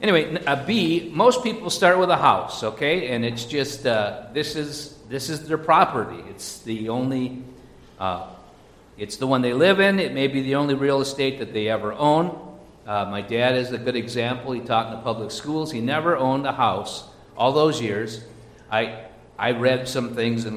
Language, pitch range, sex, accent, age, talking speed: English, 105-135 Hz, male, American, 50-69, 200 wpm